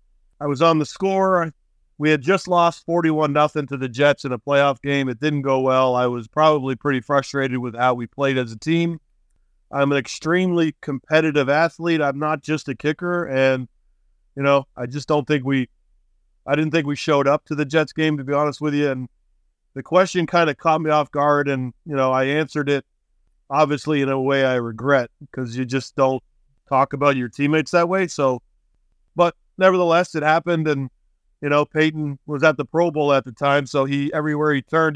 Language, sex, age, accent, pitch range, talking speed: English, male, 40-59, American, 130-150 Hz, 205 wpm